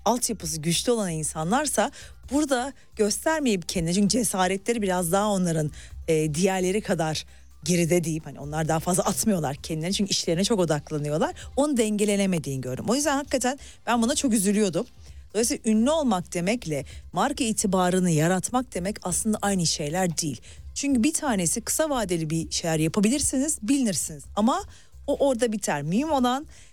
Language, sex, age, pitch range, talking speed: Turkish, female, 40-59, 175-245 Hz, 145 wpm